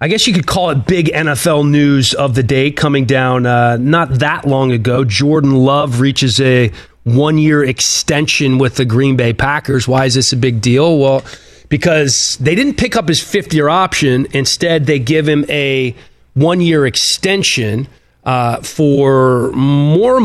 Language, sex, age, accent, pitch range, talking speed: English, male, 30-49, American, 120-145 Hz, 165 wpm